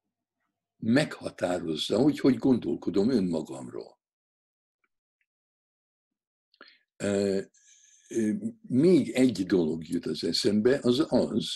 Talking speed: 80 wpm